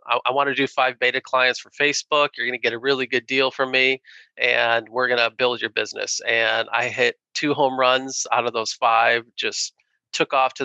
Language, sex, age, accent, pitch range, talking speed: English, male, 30-49, American, 120-140 Hz, 225 wpm